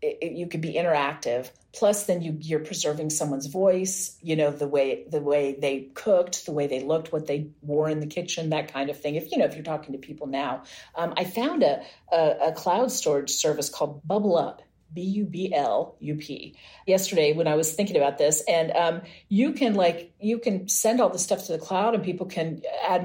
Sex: female